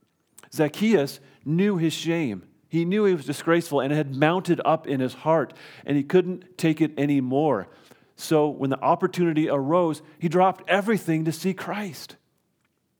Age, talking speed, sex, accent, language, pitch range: 40-59, 155 wpm, male, American, English, 115-155 Hz